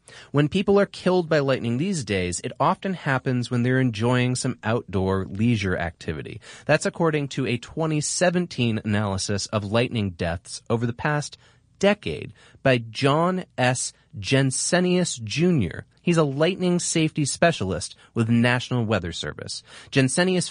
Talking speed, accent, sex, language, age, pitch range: 140 wpm, American, male, English, 30-49, 110-170 Hz